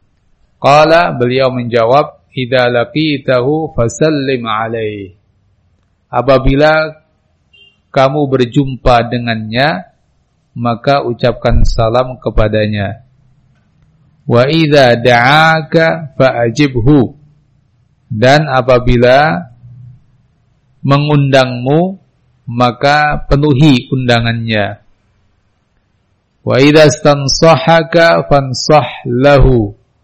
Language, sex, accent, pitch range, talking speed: English, male, Indonesian, 115-140 Hz, 55 wpm